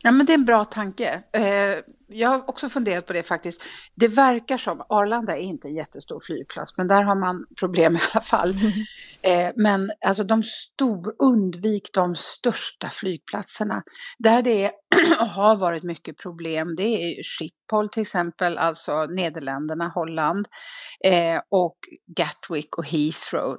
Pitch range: 170-230 Hz